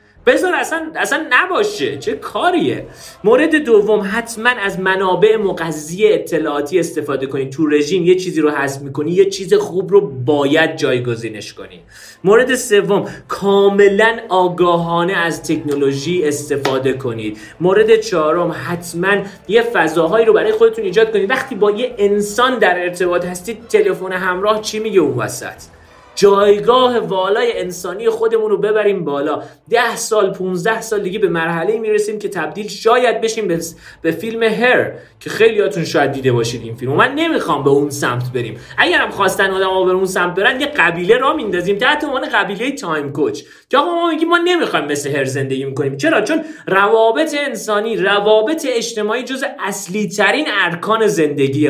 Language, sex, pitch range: Persian, male, 170-250 Hz